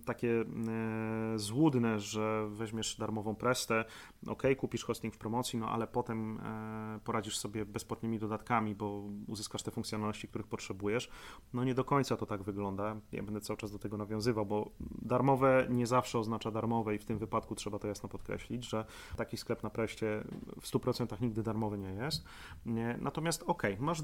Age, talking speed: 30-49, 165 wpm